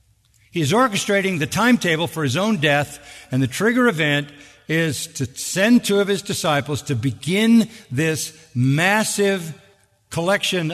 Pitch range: 130-185 Hz